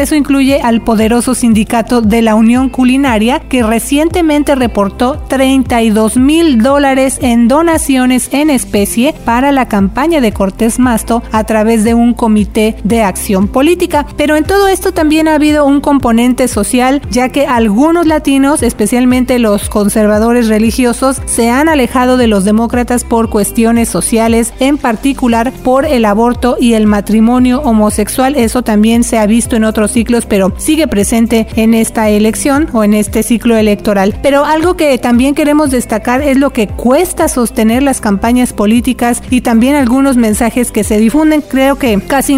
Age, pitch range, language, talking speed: 40-59, 225-275 Hz, Spanish, 160 wpm